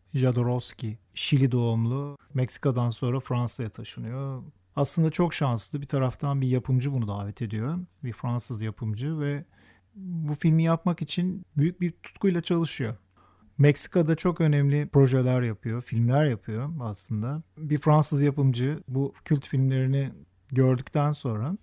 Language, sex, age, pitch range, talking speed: Turkish, male, 40-59, 120-150 Hz, 125 wpm